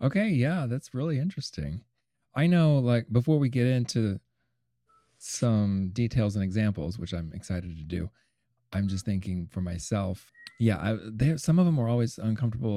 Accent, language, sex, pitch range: American, English, male, 90-120 Hz